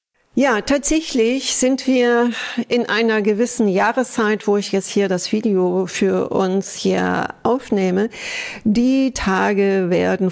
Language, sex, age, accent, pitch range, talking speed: German, female, 50-69, German, 180-225 Hz, 120 wpm